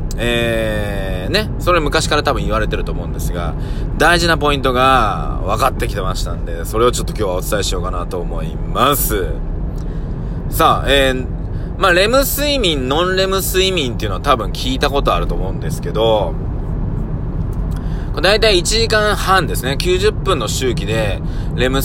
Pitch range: 90-145 Hz